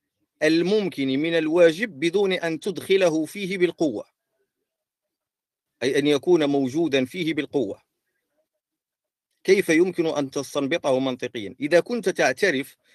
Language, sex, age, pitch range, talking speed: Arabic, male, 50-69, 130-165 Hz, 100 wpm